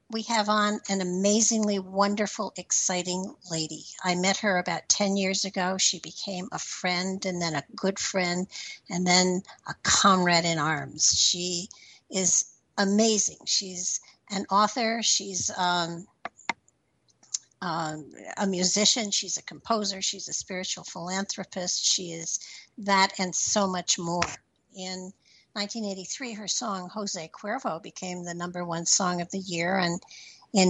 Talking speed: 140 wpm